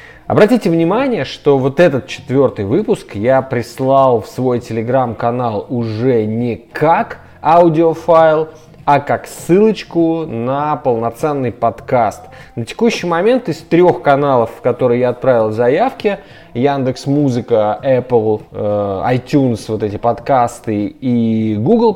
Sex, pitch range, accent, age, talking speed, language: male, 120-170 Hz, native, 20-39, 115 wpm, Russian